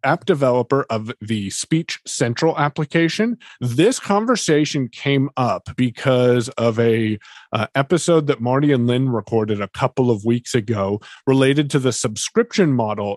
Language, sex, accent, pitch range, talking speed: English, male, American, 125-175 Hz, 140 wpm